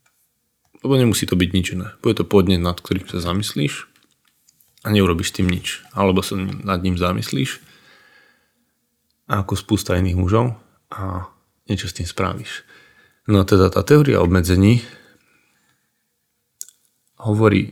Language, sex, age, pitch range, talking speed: Slovak, male, 20-39, 90-105 Hz, 130 wpm